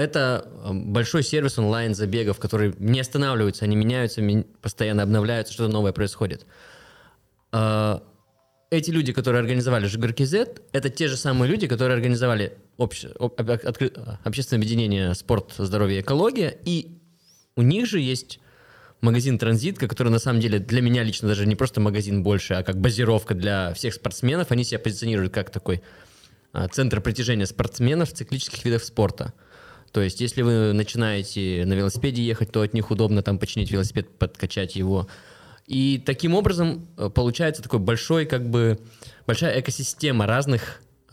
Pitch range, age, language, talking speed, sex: 105-135 Hz, 20-39, Russian, 145 wpm, male